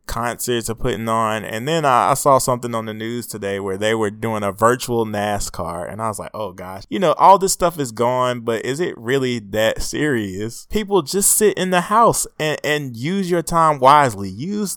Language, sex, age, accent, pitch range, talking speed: English, male, 20-39, American, 110-130 Hz, 215 wpm